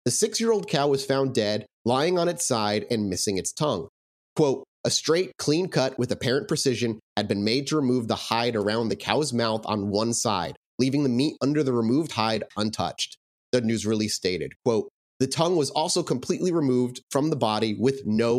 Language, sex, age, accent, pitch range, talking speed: English, male, 30-49, American, 115-150 Hz, 195 wpm